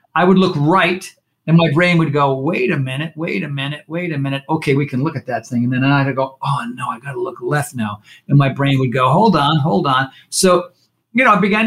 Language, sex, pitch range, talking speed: English, male, 130-170 Hz, 260 wpm